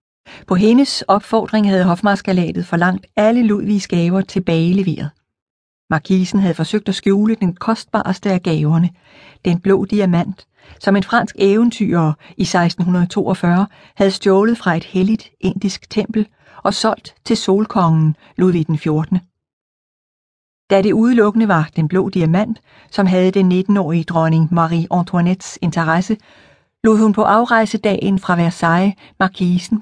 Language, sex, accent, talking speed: Danish, female, native, 130 wpm